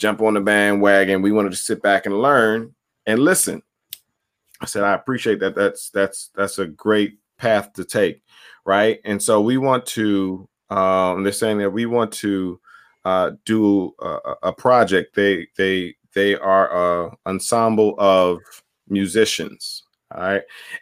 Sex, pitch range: male, 100-125 Hz